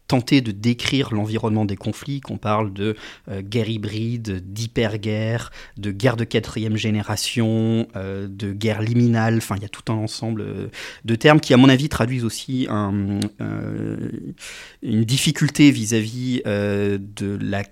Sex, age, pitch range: male, 30-49, 105-125 Hz